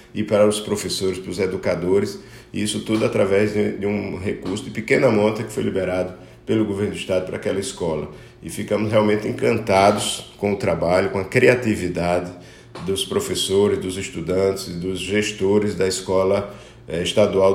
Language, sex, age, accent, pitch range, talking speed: Portuguese, male, 50-69, Brazilian, 95-105 Hz, 155 wpm